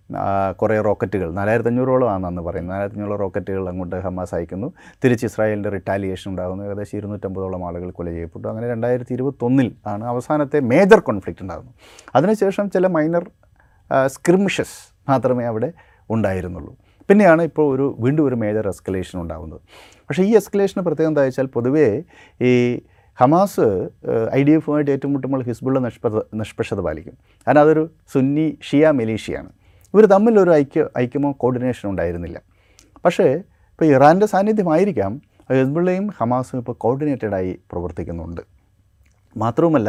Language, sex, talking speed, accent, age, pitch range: Malayalam, male, 115 wpm, native, 30-49, 100-140 Hz